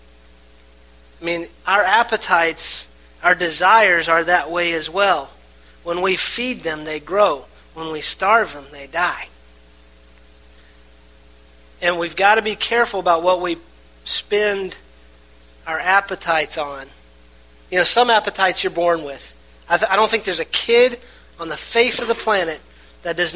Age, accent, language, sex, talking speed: 30-49, American, English, male, 150 wpm